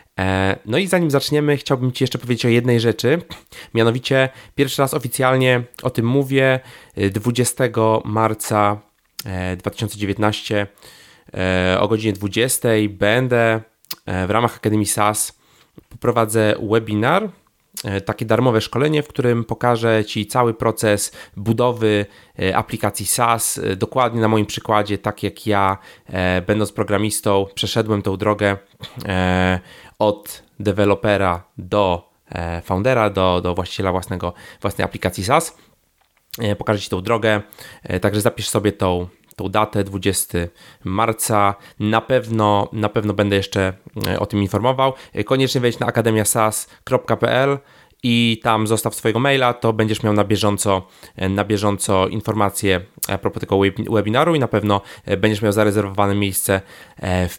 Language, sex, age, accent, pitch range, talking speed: Polish, male, 30-49, native, 100-115 Hz, 120 wpm